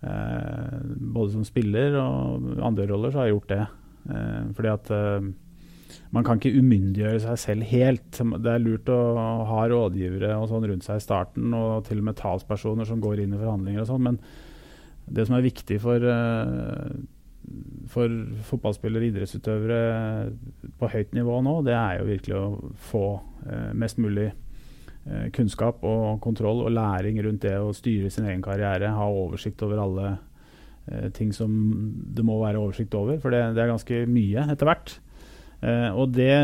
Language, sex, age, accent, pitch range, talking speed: English, male, 30-49, Norwegian, 105-120 Hz, 160 wpm